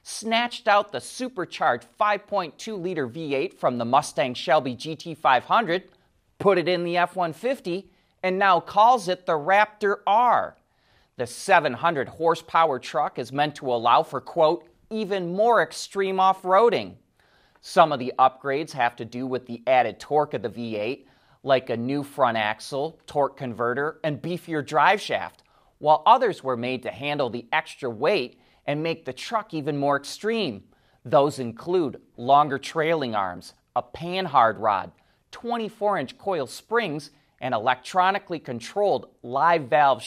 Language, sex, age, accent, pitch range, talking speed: English, male, 30-49, American, 130-185 Hz, 135 wpm